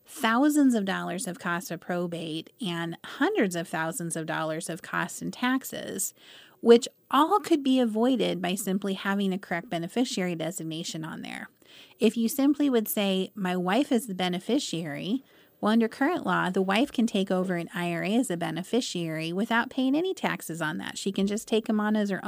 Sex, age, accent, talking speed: female, 30-49, American, 185 wpm